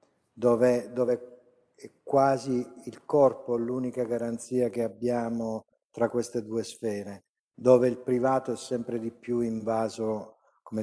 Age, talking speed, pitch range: 50-69, 125 wpm, 115-130 Hz